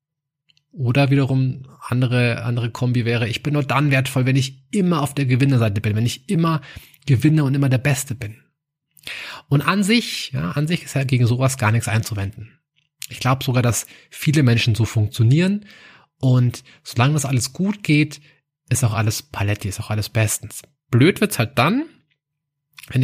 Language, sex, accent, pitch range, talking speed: German, male, German, 125-150 Hz, 175 wpm